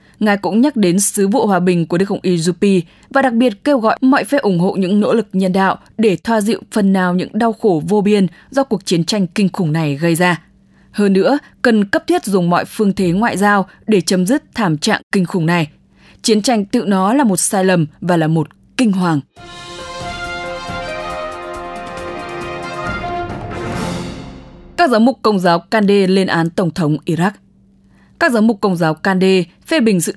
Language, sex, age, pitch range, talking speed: English, female, 20-39, 175-215 Hz, 195 wpm